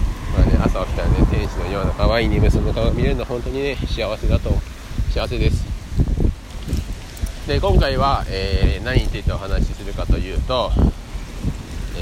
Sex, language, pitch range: male, Japanese, 80-100 Hz